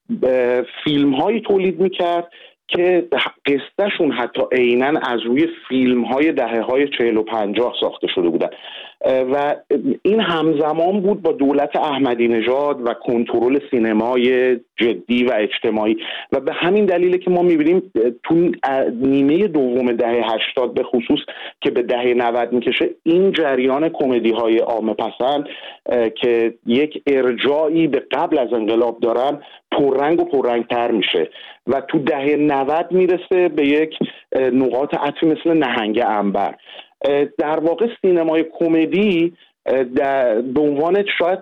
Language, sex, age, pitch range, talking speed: Persian, male, 40-59, 120-175 Hz, 125 wpm